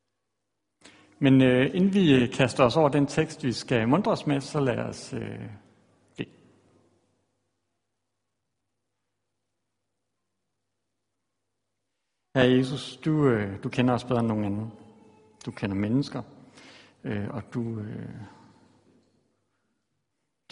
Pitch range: 110-140 Hz